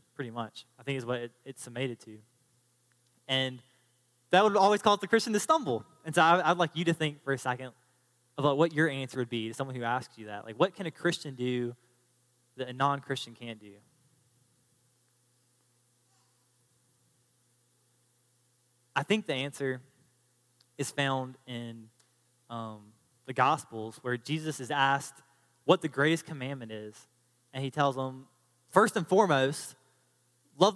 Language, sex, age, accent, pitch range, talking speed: English, male, 20-39, American, 120-155 Hz, 150 wpm